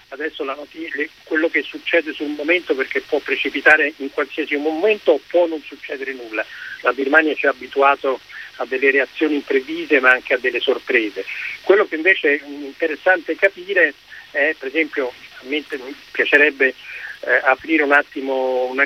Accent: native